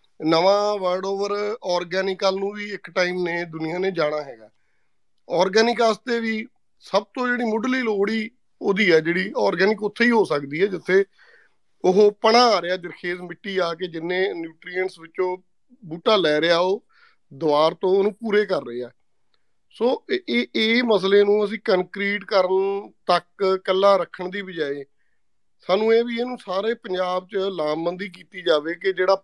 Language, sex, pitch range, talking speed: Punjabi, male, 165-205 Hz, 160 wpm